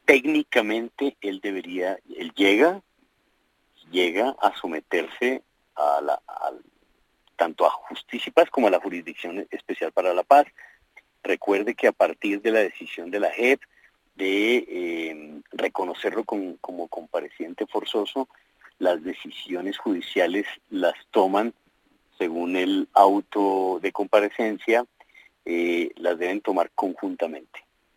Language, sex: Spanish, male